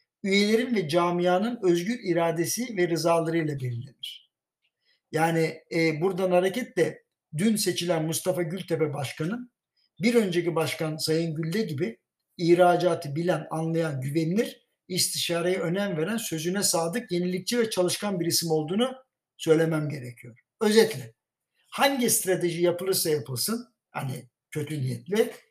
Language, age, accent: Turkish, 60-79, native